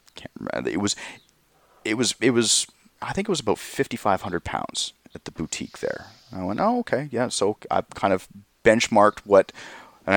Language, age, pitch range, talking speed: English, 30-49, 85-100 Hz, 190 wpm